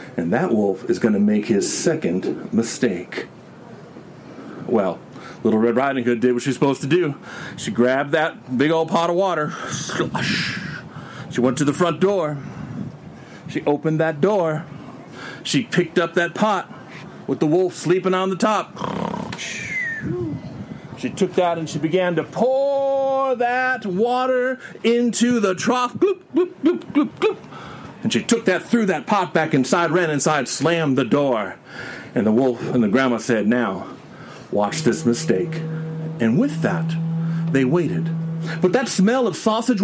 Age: 40-59